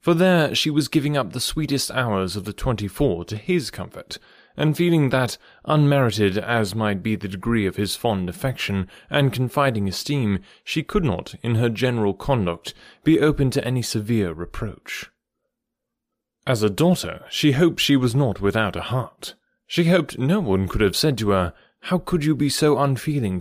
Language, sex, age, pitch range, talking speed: English, male, 30-49, 105-145 Hz, 180 wpm